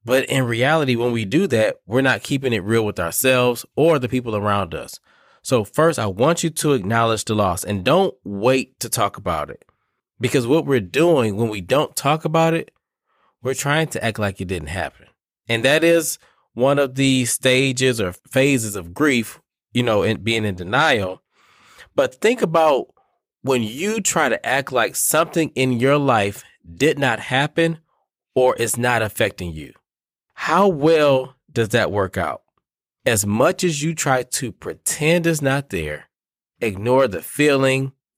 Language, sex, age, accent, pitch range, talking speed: English, male, 20-39, American, 110-145 Hz, 175 wpm